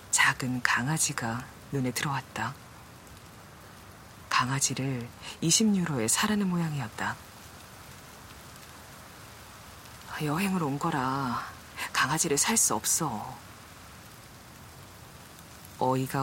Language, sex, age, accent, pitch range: Korean, female, 40-59, native, 120-165 Hz